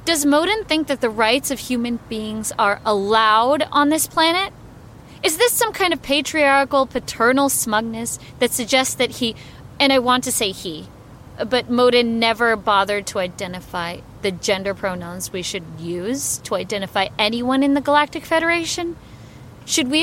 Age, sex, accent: 30-49, female, American